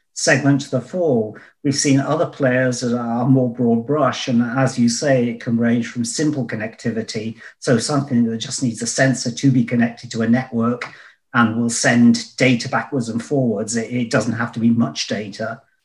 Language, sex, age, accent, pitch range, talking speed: English, male, 40-59, British, 115-135 Hz, 195 wpm